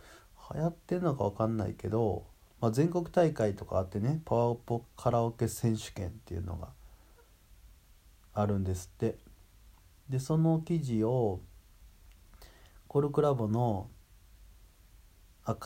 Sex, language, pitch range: male, Japanese, 90-115 Hz